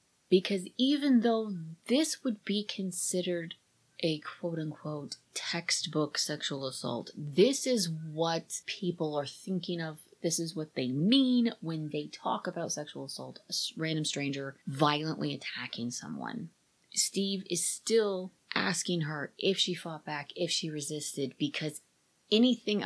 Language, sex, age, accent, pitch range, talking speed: English, female, 30-49, American, 145-185 Hz, 130 wpm